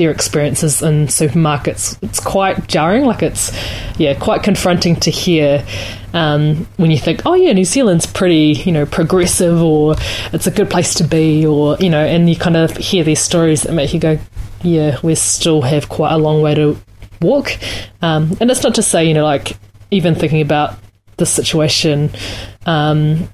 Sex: female